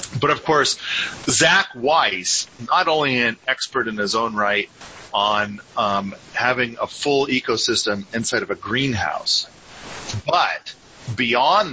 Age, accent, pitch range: 40-59, American, 105-135 Hz